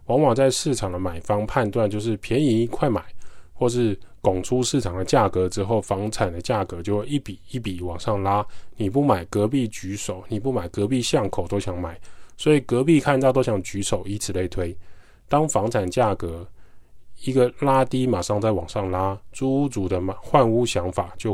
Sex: male